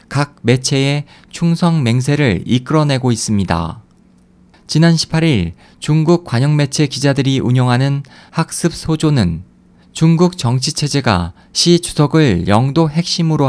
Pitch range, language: 115-155 Hz, Korean